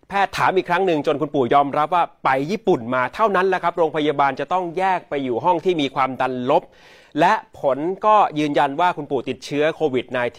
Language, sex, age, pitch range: Thai, male, 30-49, 130-185 Hz